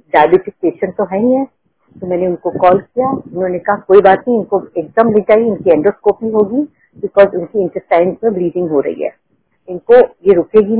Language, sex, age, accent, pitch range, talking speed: Hindi, female, 50-69, native, 180-220 Hz, 165 wpm